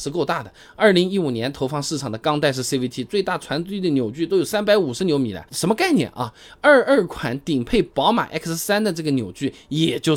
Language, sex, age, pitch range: Chinese, male, 20-39, 130-205 Hz